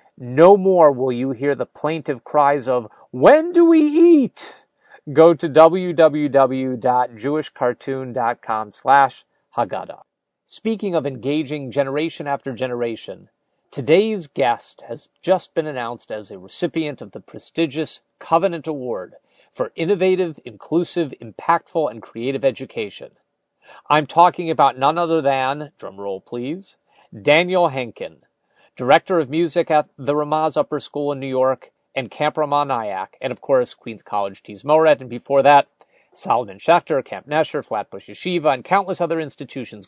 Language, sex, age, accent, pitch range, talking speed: English, male, 40-59, American, 125-170 Hz, 135 wpm